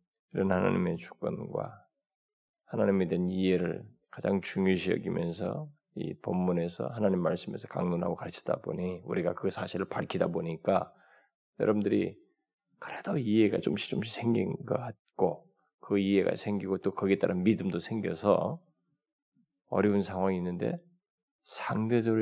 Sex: male